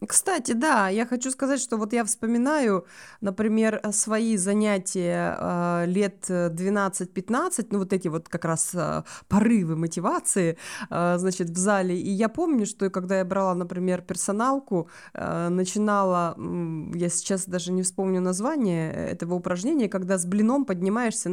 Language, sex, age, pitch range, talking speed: Russian, female, 20-39, 175-225 Hz, 145 wpm